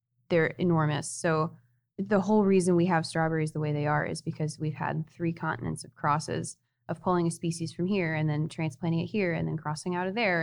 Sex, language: female, English